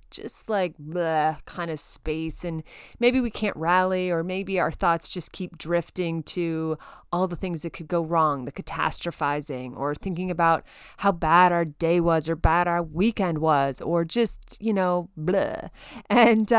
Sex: female